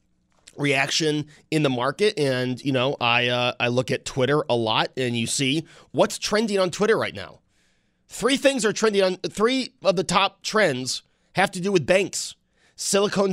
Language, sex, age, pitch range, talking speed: English, male, 30-49, 130-175 Hz, 180 wpm